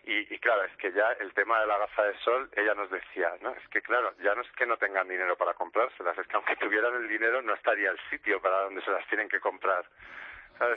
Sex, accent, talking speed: male, Spanish, 260 wpm